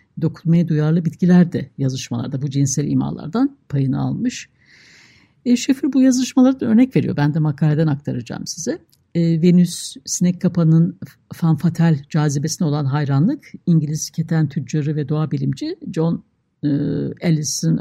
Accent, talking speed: native, 125 wpm